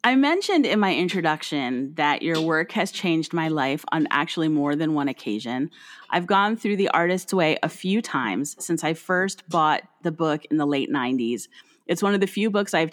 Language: English